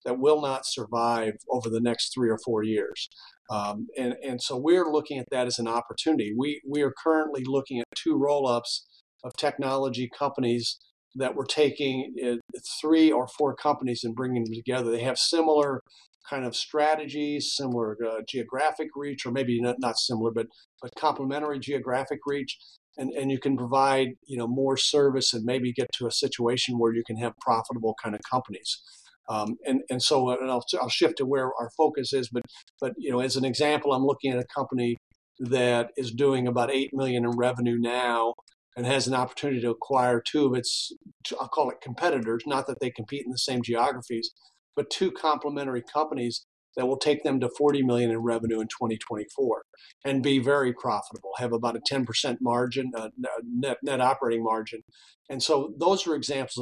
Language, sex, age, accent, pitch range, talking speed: English, male, 50-69, American, 120-140 Hz, 190 wpm